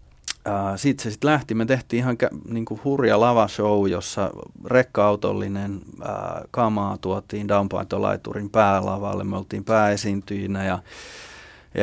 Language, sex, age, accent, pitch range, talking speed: Finnish, male, 30-49, native, 95-110 Hz, 120 wpm